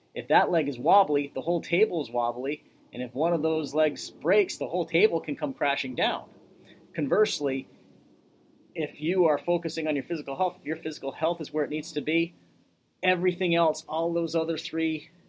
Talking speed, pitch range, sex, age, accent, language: 190 wpm, 135-160 Hz, male, 40-59, American, English